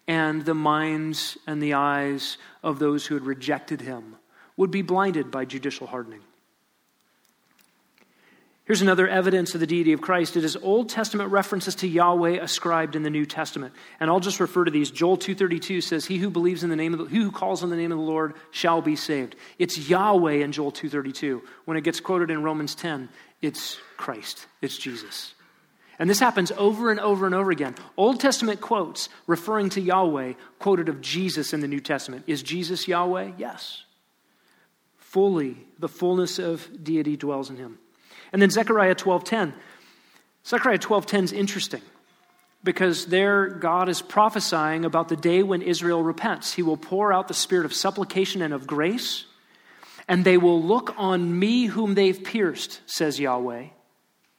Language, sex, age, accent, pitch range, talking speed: English, male, 40-59, American, 155-190 Hz, 175 wpm